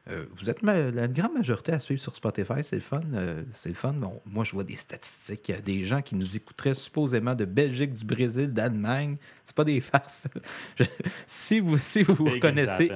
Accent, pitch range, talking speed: Canadian, 100-140 Hz, 180 wpm